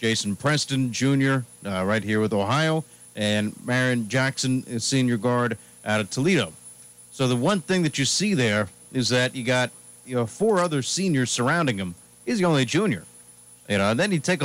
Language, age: English, 40-59